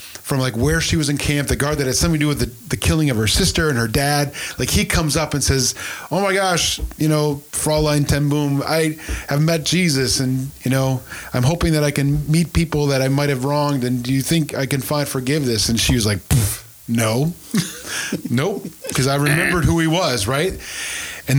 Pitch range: 120-150 Hz